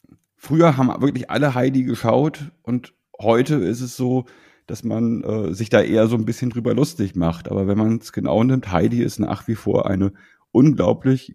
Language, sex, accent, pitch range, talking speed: German, male, German, 95-125 Hz, 190 wpm